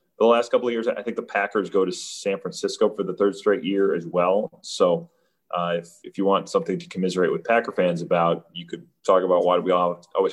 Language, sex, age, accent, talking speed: English, male, 30-49, American, 240 wpm